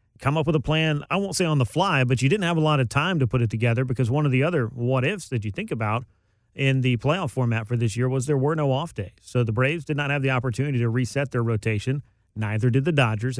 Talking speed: 280 wpm